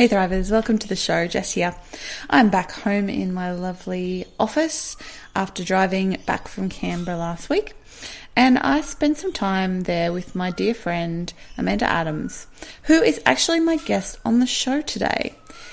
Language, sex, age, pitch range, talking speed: English, female, 20-39, 175-225 Hz, 160 wpm